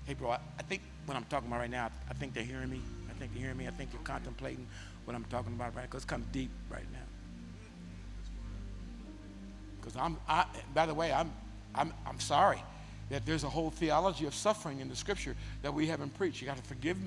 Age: 50-69